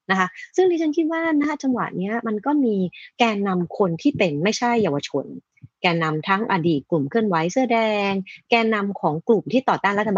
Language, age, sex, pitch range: Thai, 30-49, female, 165-235 Hz